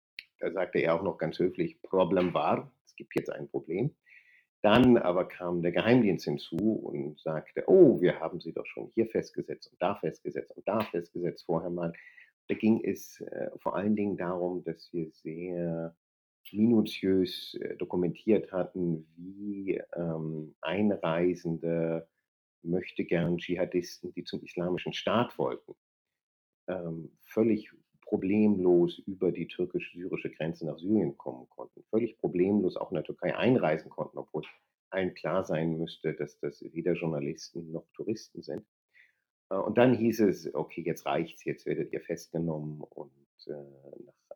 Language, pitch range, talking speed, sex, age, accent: German, 80-105 Hz, 140 wpm, male, 50-69, German